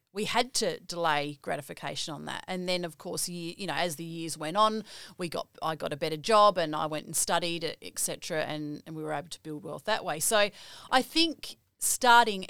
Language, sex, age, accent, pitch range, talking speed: English, female, 30-49, Australian, 170-225 Hz, 225 wpm